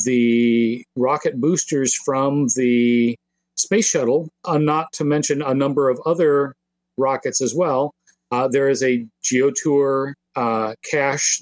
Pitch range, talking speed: 120-150 Hz, 130 wpm